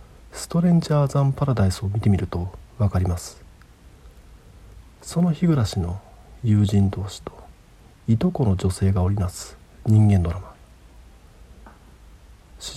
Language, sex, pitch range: Japanese, male, 85-115 Hz